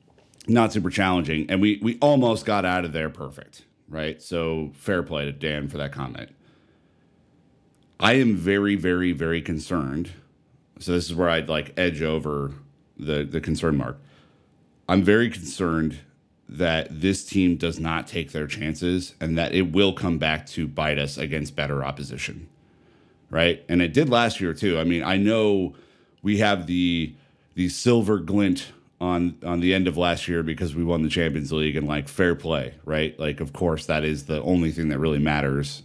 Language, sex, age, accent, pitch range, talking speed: English, male, 40-59, American, 75-100 Hz, 180 wpm